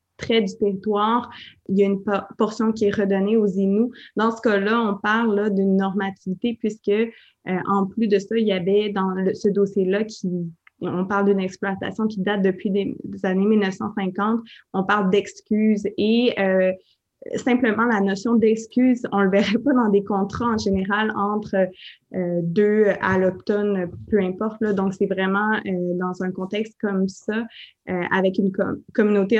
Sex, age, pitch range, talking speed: female, 20-39, 195-225 Hz, 175 wpm